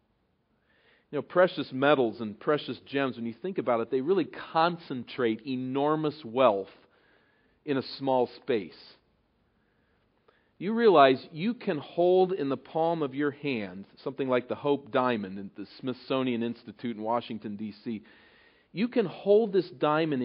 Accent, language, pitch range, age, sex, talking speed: American, English, 130-185 Hz, 40-59, male, 145 wpm